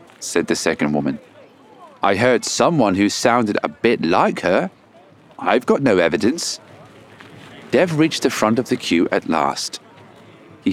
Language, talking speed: English, 150 wpm